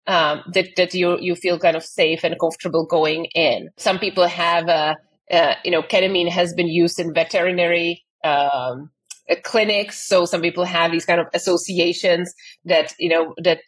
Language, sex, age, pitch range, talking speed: English, female, 30-49, 165-180 Hz, 175 wpm